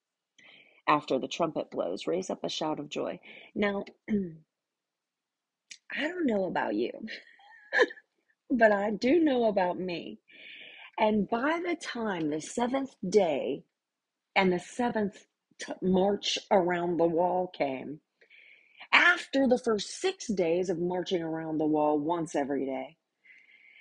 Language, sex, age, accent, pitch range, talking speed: English, female, 40-59, American, 150-220 Hz, 125 wpm